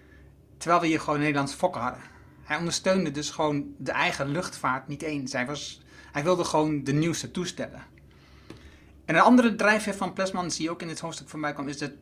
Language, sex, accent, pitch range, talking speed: Dutch, male, Dutch, 140-170 Hz, 205 wpm